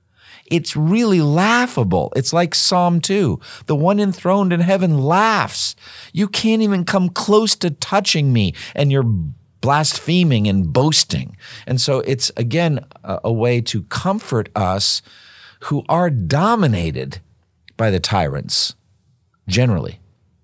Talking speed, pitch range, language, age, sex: 125 wpm, 100-155 Hz, English, 50-69, male